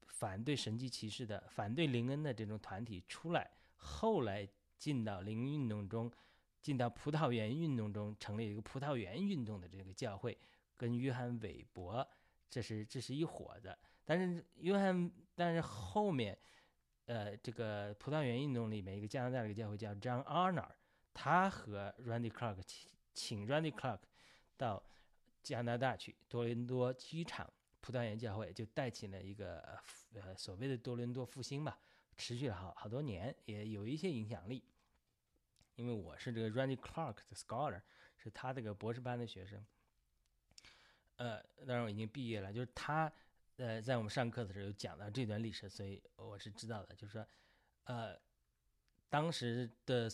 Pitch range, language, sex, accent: 105-130 Hz, Chinese, male, native